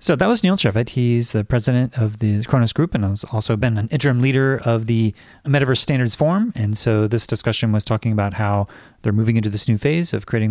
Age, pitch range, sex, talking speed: 30-49, 105-130 Hz, male, 230 wpm